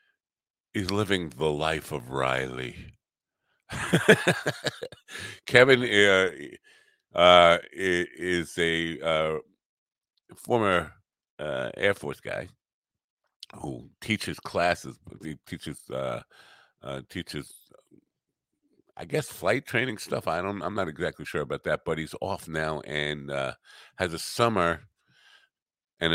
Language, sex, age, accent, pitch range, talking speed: English, male, 50-69, American, 80-105 Hz, 110 wpm